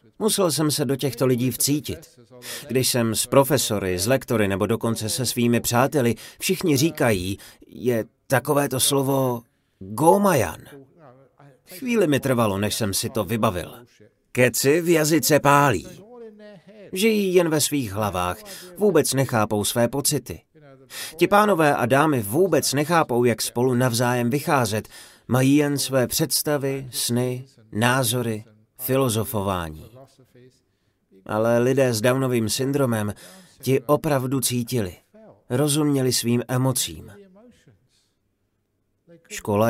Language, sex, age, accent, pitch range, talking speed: Czech, male, 30-49, native, 115-140 Hz, 110 wpm